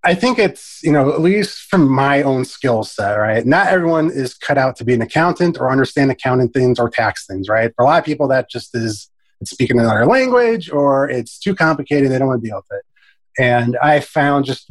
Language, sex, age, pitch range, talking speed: English, male, 20-39, 115-150 Hz, 230 wpm